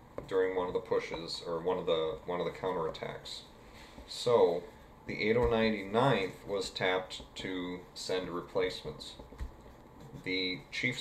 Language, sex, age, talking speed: English, male, 30-49, 125 wpm